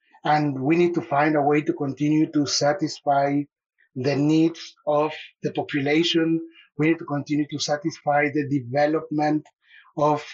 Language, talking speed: English, 145 wpm